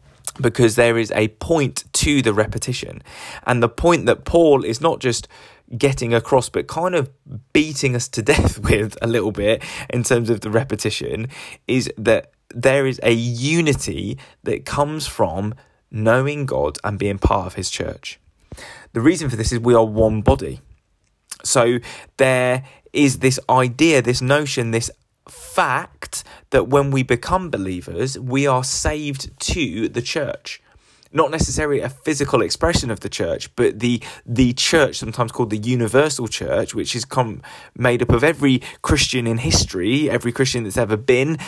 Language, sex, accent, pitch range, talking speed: English, male, British, 115-140 Hz, 160 wpm